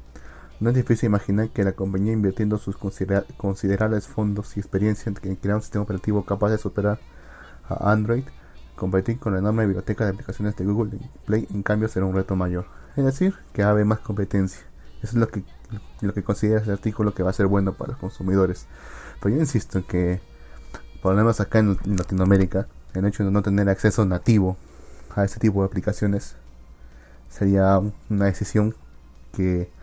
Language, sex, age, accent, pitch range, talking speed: Spanish, male, 30-49, Venezuelan, 70-105 Hz, 180 wpm